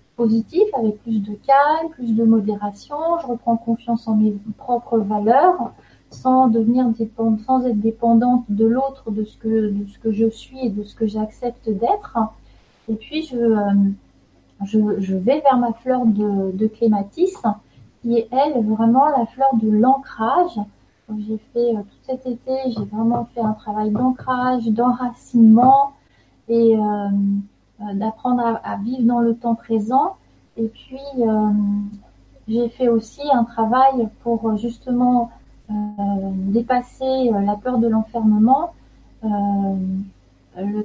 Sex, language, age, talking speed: female, French, 30-49, 145 wpm